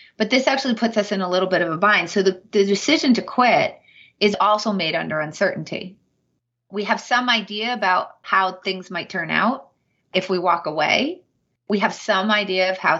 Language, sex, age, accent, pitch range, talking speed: English, female, 30-49, American, 175-215 Hz, 200 wpm